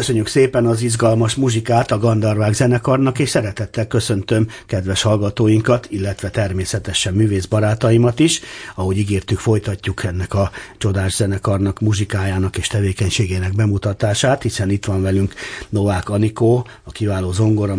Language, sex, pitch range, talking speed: Hungarian, male, 95-115 Hz, 130 wpm